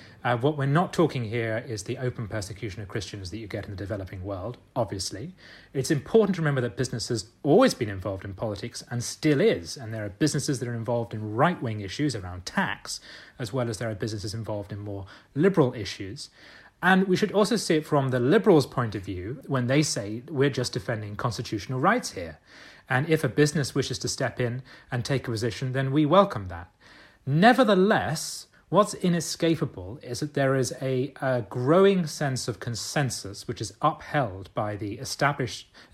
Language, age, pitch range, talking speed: English, 30-49, 110-150 Hz, 190 wpm